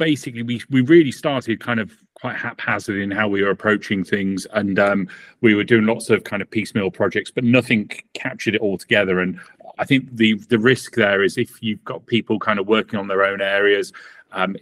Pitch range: 100-115 Hz